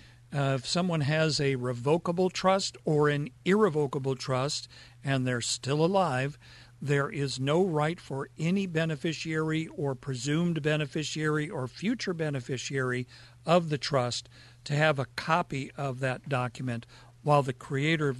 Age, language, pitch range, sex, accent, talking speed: 50-69, English, 125-160 Hz, male, American, 140 wpm